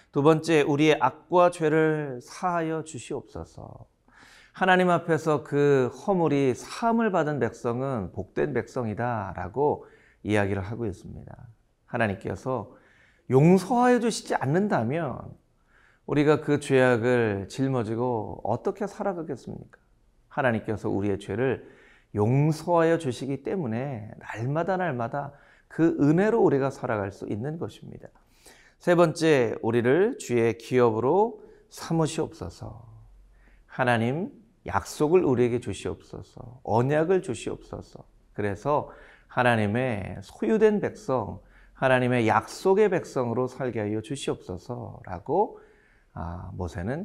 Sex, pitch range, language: male, 110-155 Hz, Korean